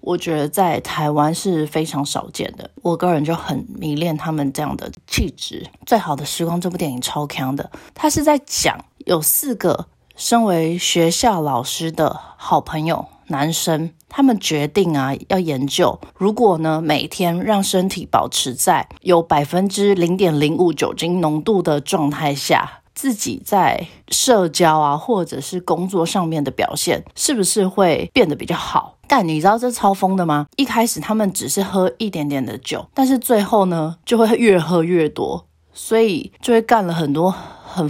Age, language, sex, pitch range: 20-39, Chinese, female, 155-200 Hz